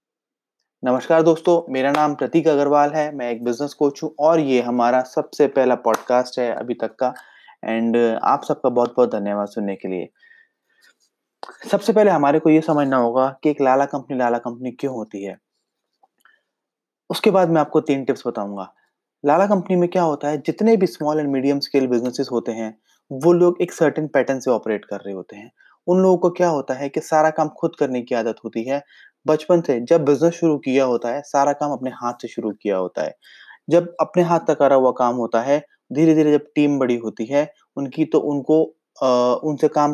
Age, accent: 20-39, native